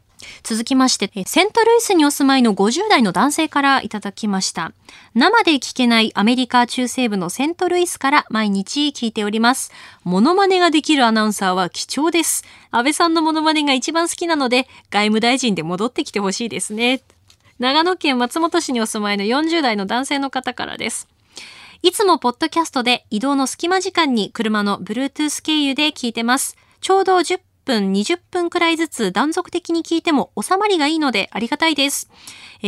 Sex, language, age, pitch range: female, Japanese, 20-39, 205-300 Hz